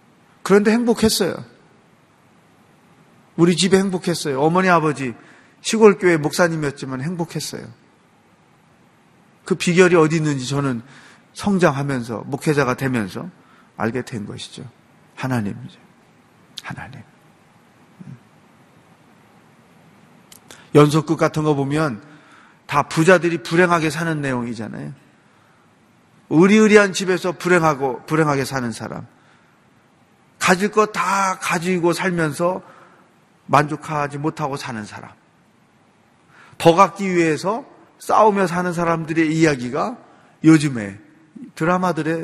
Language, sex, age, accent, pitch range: Korean, male, 30-49, native, 130-175 Hz